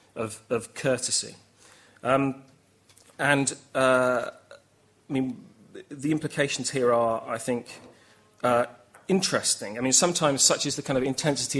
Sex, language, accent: male, English, British